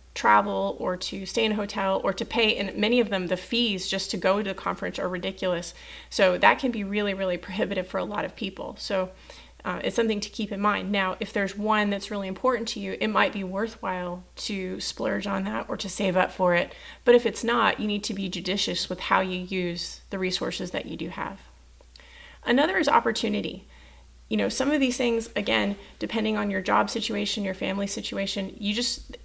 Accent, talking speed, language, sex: American, 220 wpm, English, female